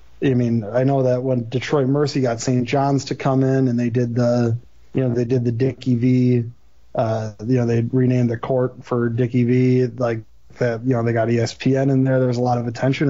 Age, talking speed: 30-49, 230 wpm